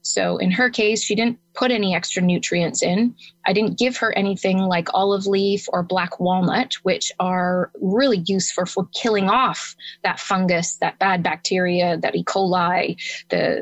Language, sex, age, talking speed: English, female, 20-39, 170 wpm